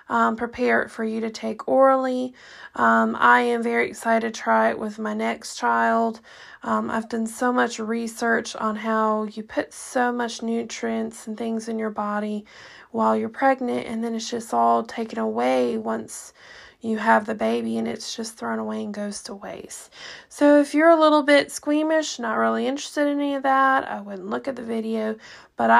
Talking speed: 195 wpm